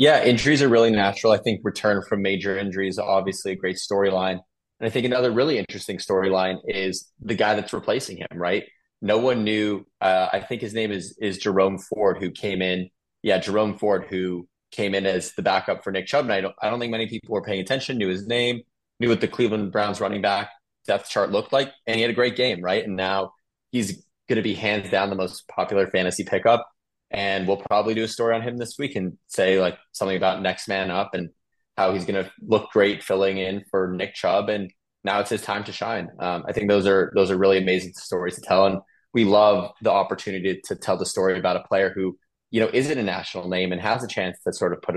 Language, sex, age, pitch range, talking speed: English, male, 20-39, 95-105 Hz, 240 wpm